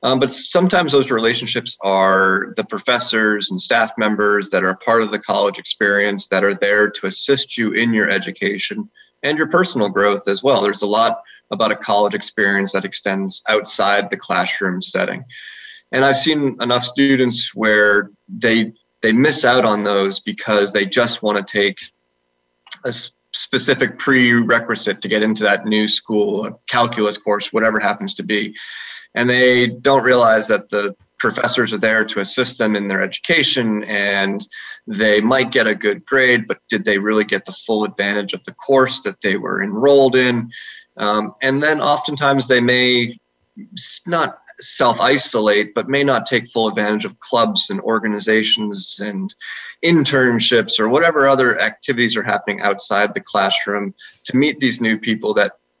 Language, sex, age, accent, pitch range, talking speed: English, male, 30-49, American, 105-135 Hz, 165 wpm